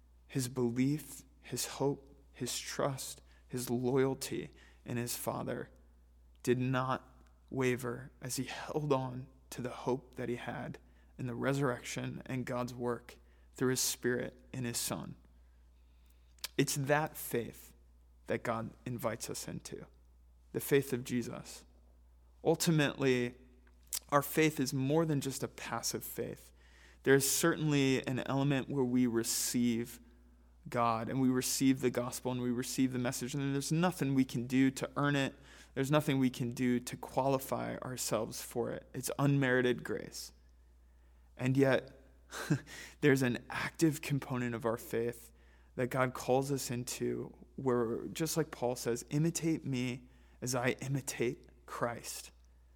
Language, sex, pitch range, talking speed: English, male, 100-135 Hz, 140 wpm